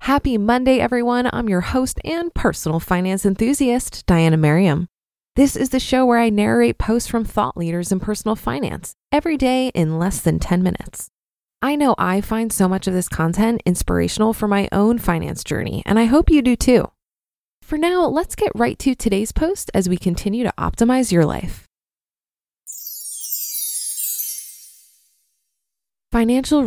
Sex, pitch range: female, 180-250 Hz